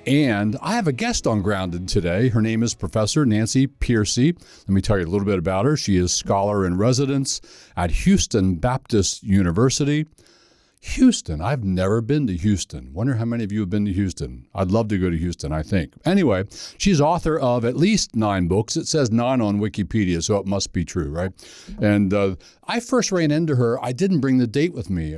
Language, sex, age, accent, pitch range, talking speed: English, male, 60-79, American, 95-130 Hz, 210 wpm